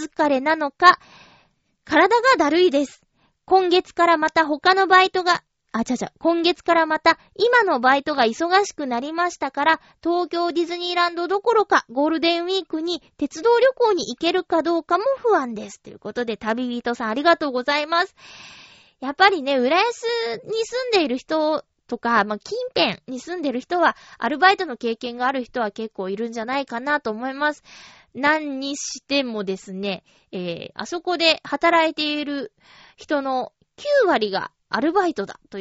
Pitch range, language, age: 240-355 Hz, Japanese, 20-39